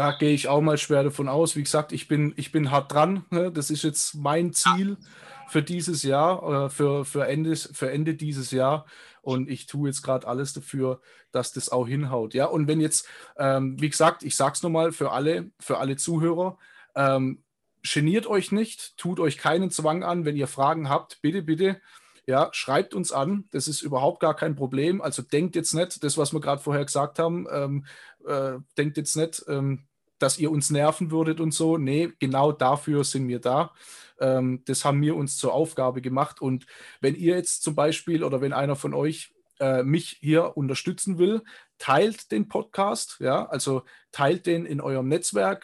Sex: male